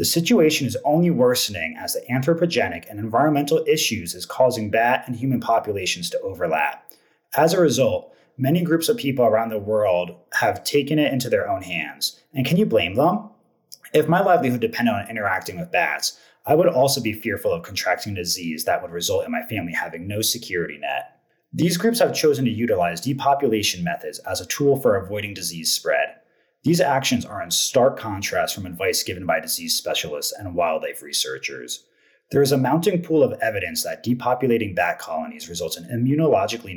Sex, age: male, 30-49